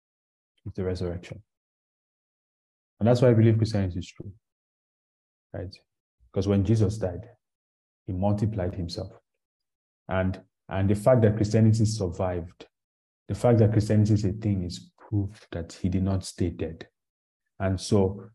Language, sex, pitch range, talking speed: English, male, 90-110 Hz, 135 wpm